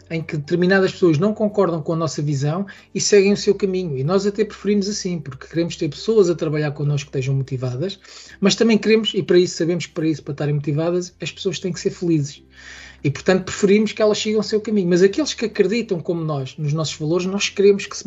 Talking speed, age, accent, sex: 235 wpm, 20-39, Portuguese, male